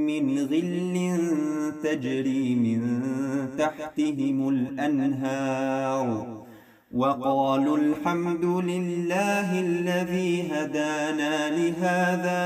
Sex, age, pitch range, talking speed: male, 40-59, 135-180 Hz, 60 wpm